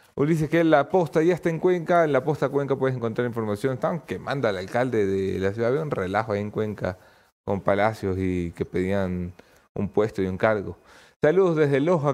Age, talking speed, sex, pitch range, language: 30-49, 210 wpm, male, 105-135 Hz, English